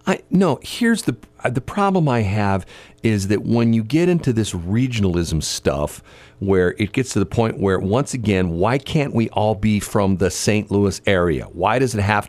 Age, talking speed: 40-59, 195 wpm